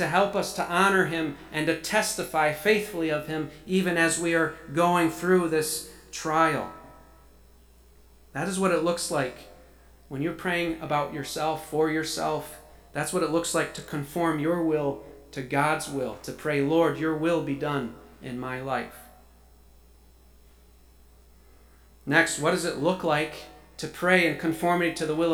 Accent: American